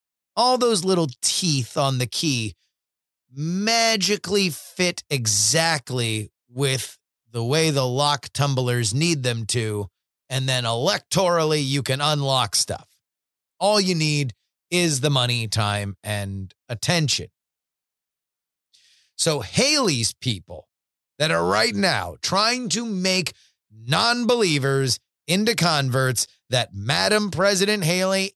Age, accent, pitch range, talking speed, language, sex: 30-49, American, 120-180 Hz, 110 wpm, English, male